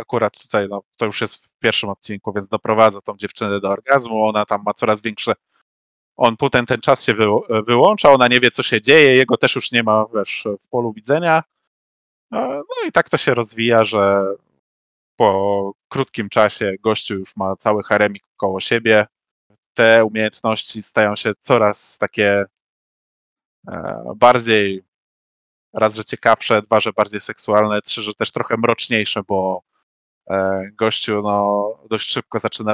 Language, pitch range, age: Polish, 100-115 Hz, 20-39